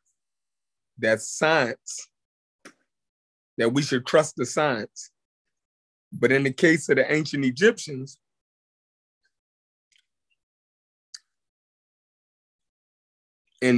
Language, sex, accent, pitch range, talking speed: English, male, American, 105-150 Hz, 75 wpm